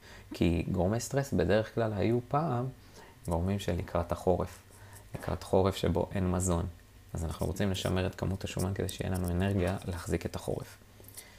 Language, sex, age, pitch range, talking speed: Hebrew, male, 20-39, 85-105 Hz, 160 wpm